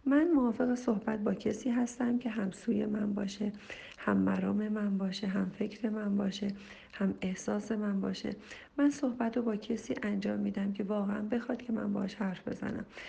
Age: 40-59